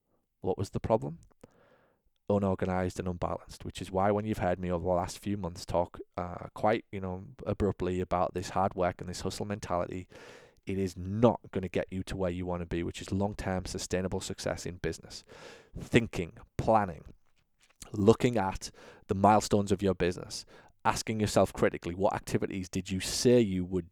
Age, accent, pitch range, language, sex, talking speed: 20-39, British, 90-105 Hz, English, male, 185 wpm